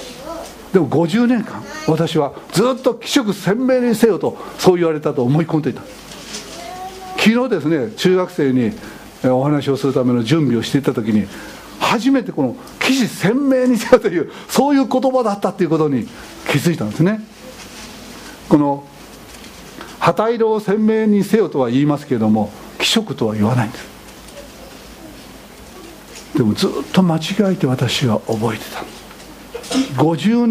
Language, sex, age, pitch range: Japanese, male, 60-79, 150-245 Hz